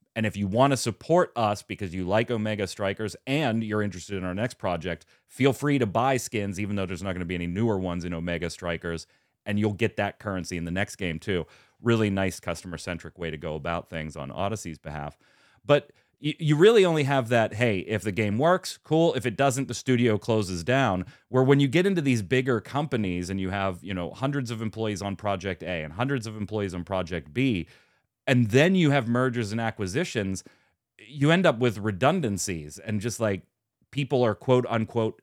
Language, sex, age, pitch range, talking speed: English, male, 30-49, 90-120 Hz, 210 wpm